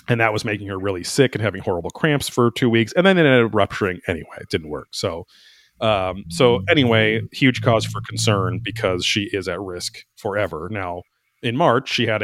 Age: 30-49